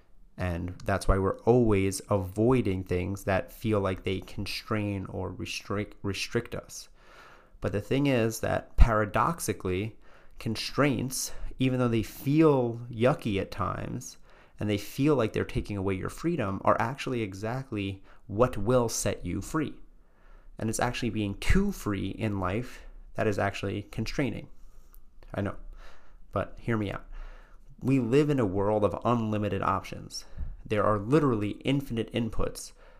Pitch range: 100-120 Hz